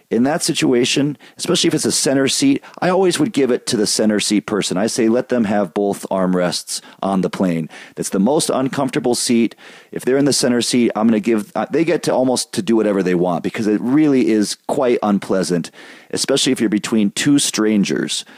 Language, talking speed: English, 210 wpm